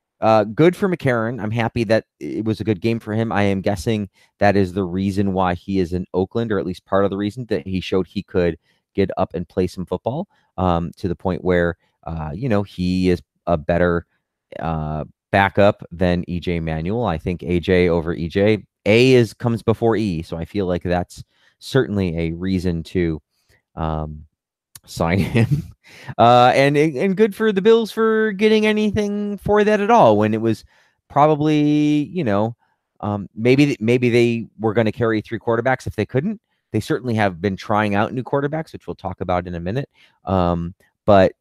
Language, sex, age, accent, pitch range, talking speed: English, male, 30-49, American, 90-120 Hz, 195 wpm